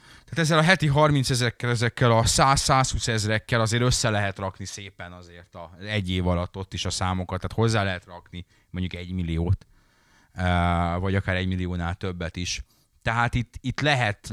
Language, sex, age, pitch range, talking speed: Hungarian, male, 30-49, 95-125 Hz, 170 wpm